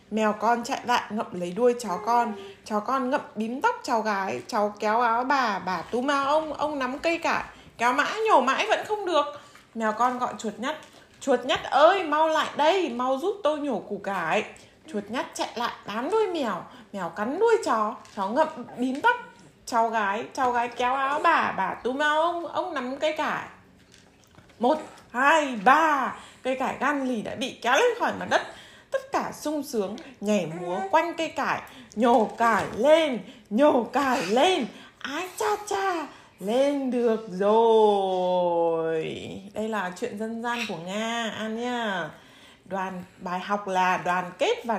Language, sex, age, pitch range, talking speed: Vietnamese, female, 20-39, 210-290 Hz, 175 wpm